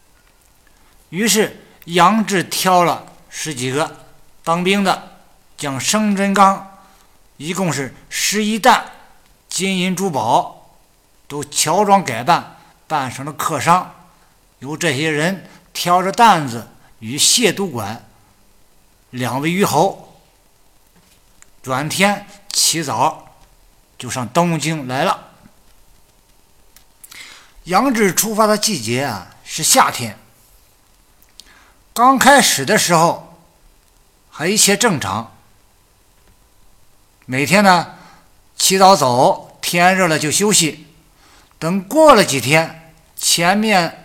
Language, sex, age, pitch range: Chinese, male, 50-69, 115-190 Hz